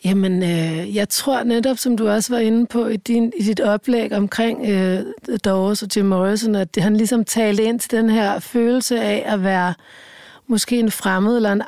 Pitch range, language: 195-230 Hz, Danish